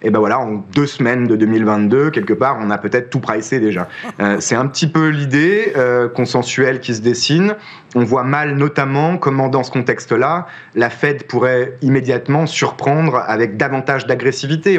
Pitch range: 105-135 Hz